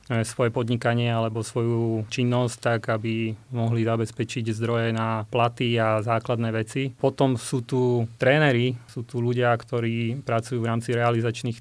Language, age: Slovak, 30-49